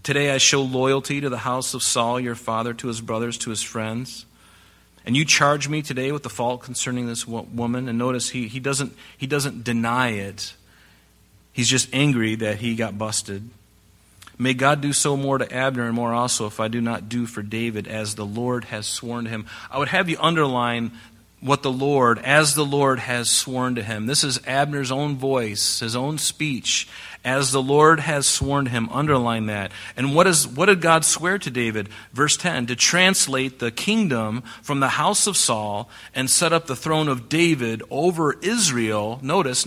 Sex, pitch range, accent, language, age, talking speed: male, 115-145 Hz, American, English, 40-59, 195 wpm